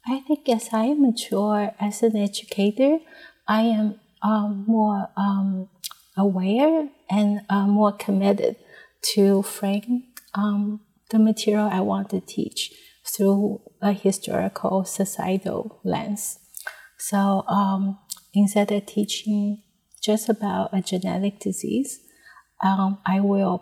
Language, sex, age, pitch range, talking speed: English, female, 30-49, 190-215 Hz, 115 wpm